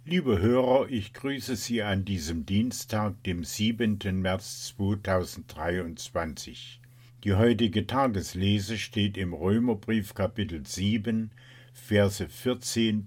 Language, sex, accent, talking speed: German, male, German, 100 wpm